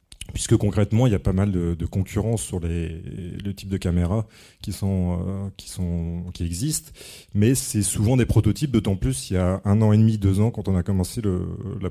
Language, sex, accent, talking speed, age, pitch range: French, male, French, 220 wpm, 30-49, 90-110 Hz